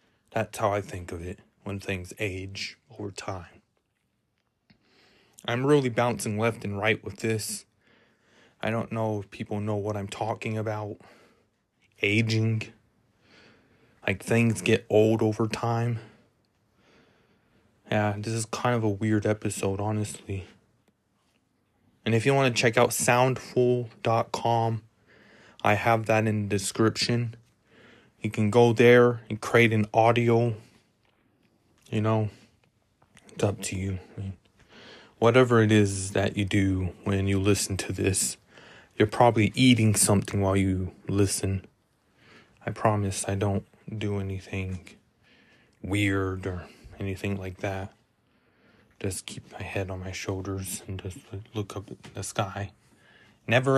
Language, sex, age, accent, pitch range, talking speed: English, male, 20-39, American, 100-115 Hz, 130 wpm